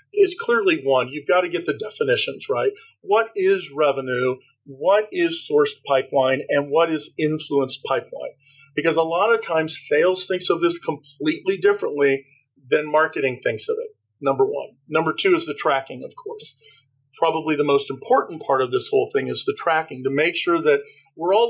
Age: 40-59